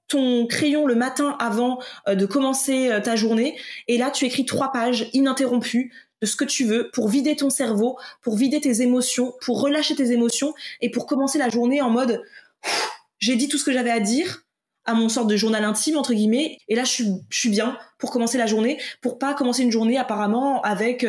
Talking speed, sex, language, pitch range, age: 210 wpm, female, French, 215-265 Hz, 20-39